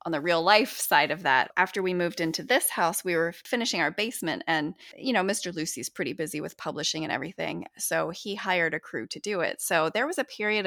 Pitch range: 160-200 Hz